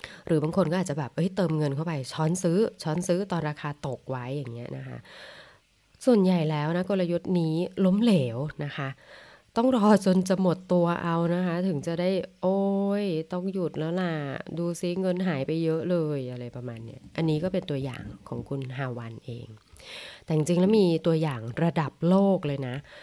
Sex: female